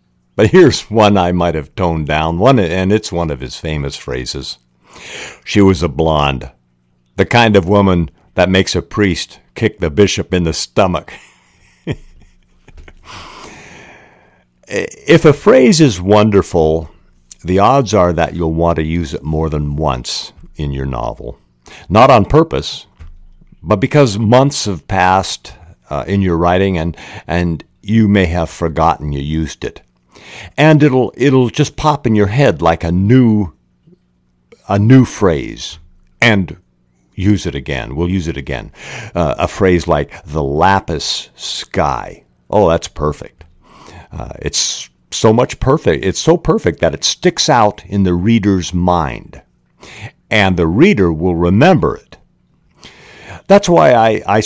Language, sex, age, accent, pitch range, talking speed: English, male, 60-79, American, 75-105 Hz, 145 wpm